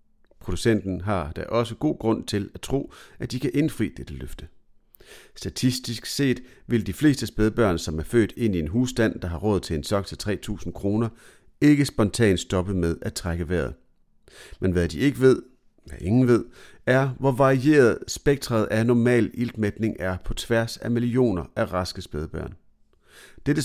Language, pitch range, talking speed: Danish, 90-125 Hz, 175 wpm